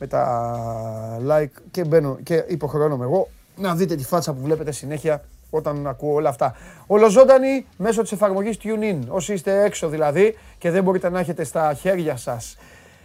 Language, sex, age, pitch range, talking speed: Greek, male, 30-49, 130-185 Hz, 165 wpm